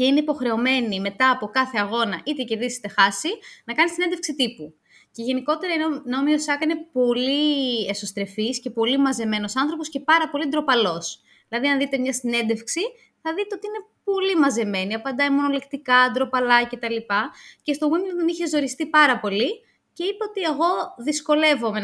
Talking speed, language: 160 wpm, Greek